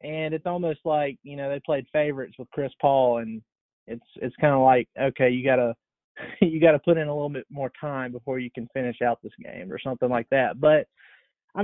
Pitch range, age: 130-165 Hz, 20-39